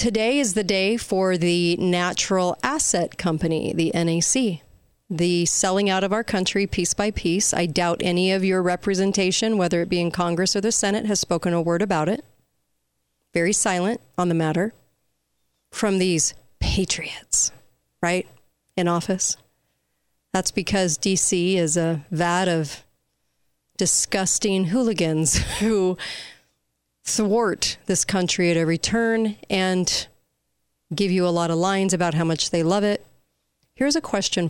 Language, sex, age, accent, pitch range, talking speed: English, female, 40-59, American, 165-195 Hz, 145 wpm